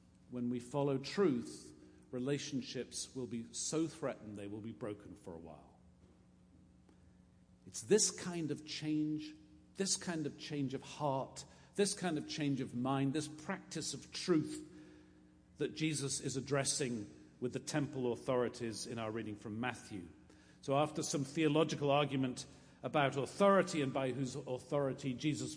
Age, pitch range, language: 50-69, 120-160 Hz, English